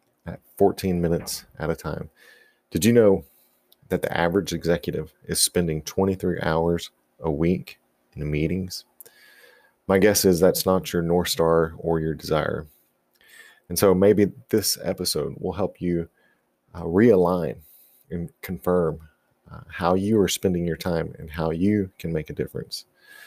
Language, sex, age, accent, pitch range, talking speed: English, male, 30-49, American, 80-90 Hz, 150 wpm